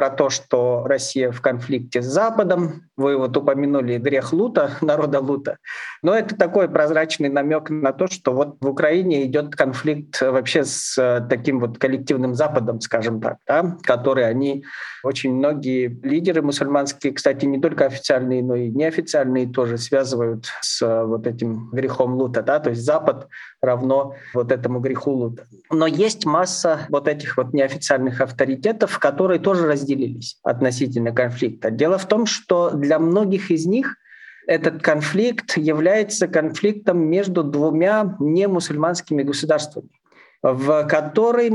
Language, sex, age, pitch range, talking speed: Russian, male, 40-59, 130-175 Hz, 140 wpm